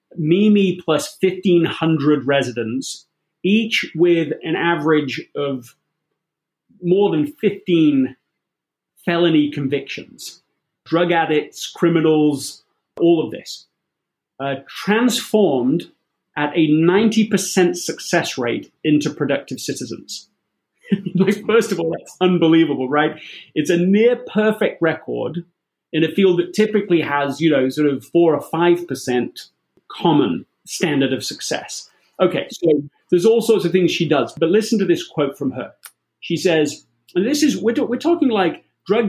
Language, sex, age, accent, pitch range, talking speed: English, male, 30-49, British, 155-200 Hz, 125 wpm